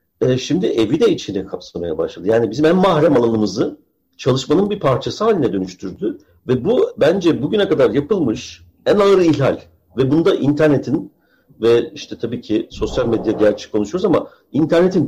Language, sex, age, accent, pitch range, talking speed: Turkish, male, 50-69, native, 125-195 Hz, 150 wpm